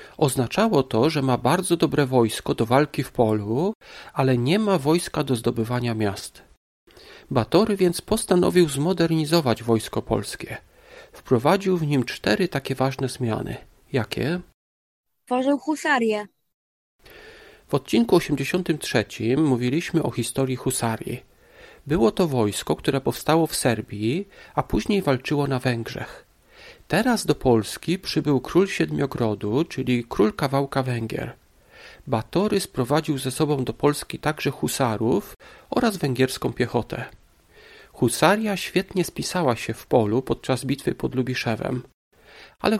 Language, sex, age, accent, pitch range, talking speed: Polish, male, 40-59, native, 120-175 Hz, 120 wpm